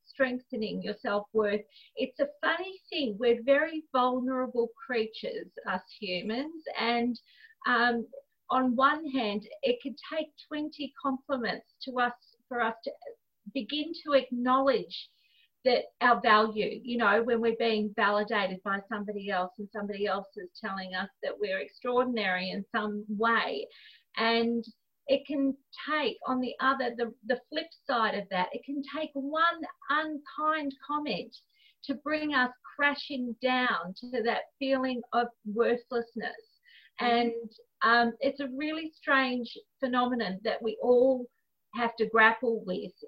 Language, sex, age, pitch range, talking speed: English, female, 40-59, 220-275 Hz, 140 wpm